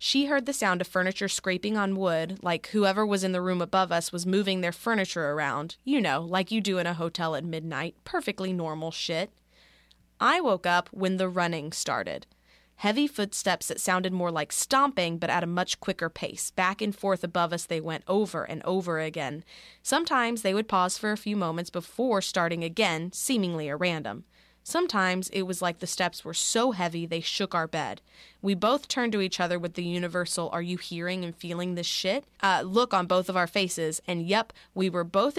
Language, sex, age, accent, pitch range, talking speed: English, female, 20-39, American, 170-195 Hz, 205 wpm